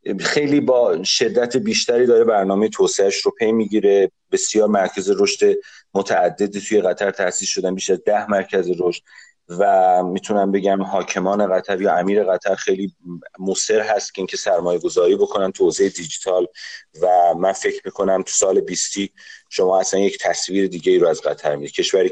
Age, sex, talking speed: 30-49, male, 155 wpm